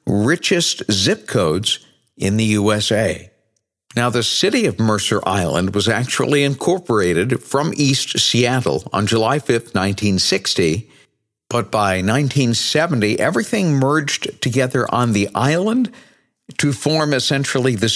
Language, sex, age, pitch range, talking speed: English, male, 60-79, 110-145 Hz, 115 wpm